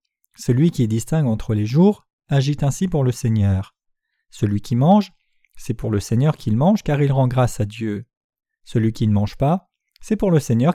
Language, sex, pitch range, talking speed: French, male, 115-175 Hz, 195 wpm